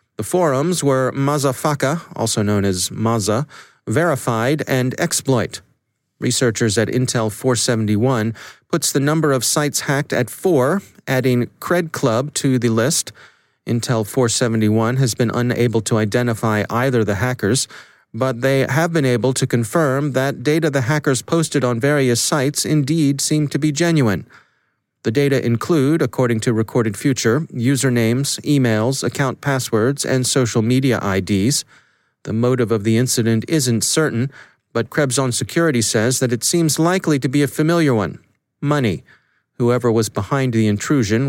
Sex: male